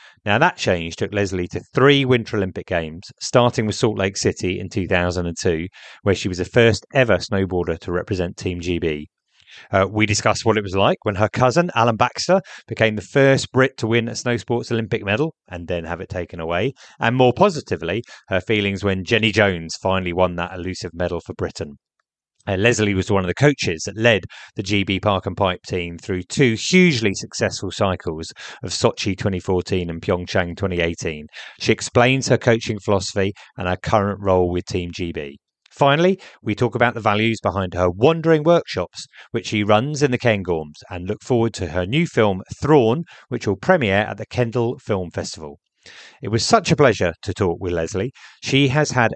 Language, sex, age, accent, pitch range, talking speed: English, male, 30-49, British, 90-120 Hz, 190 wpm